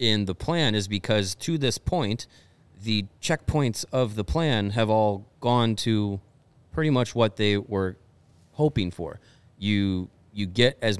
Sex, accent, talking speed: male, American, 155 wpm